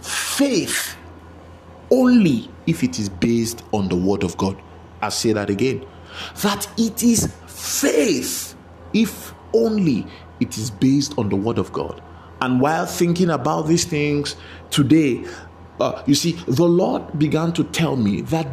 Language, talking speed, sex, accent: English, 150 wpm, male, Nigerian